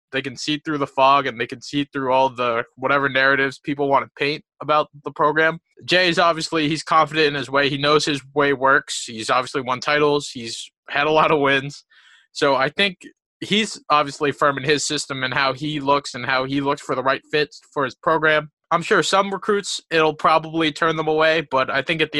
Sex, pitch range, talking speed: male, 140-160 Hz, 220 wpm